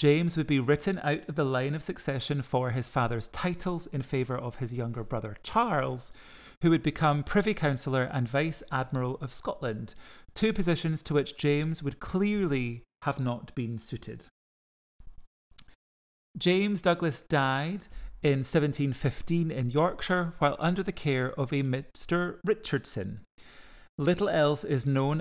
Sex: male